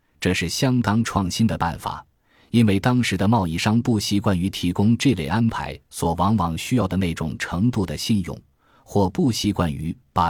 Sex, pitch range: male, 85-115 Hz